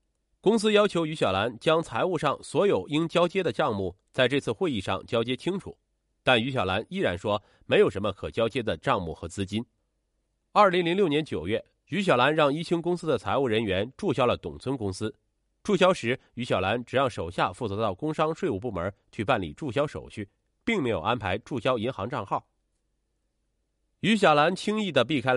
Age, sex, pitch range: 30-49, male, 100-155 Hz